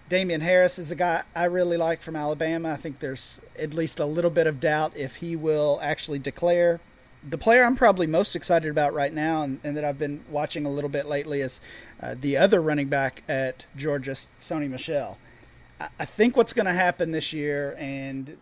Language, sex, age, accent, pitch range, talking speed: English, male, 40-59, American, 145-170 Hz, 210 wpm